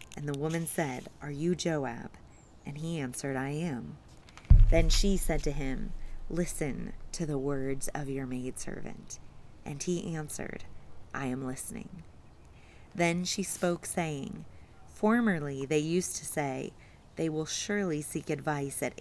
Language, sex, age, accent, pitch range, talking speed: English, female, 30-49, American, 140-180 Hz, 140 wpm